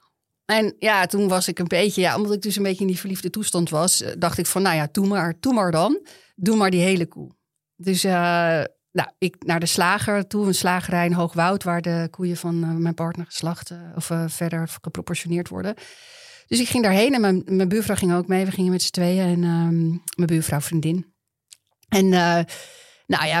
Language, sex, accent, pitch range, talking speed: Dutch, female, Dutch, 170-200 Hz, 210 wpm